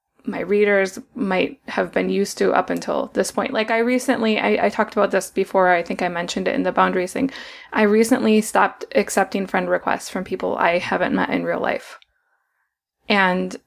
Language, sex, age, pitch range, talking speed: English, female, 20-39, 195-250 Hz, 195 wpm